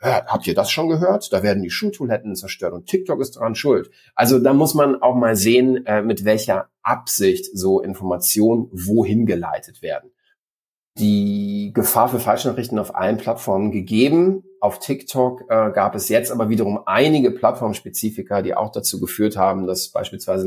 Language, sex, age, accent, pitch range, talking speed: German, male, 40-59, German, 105-135 Hz, 165 wpm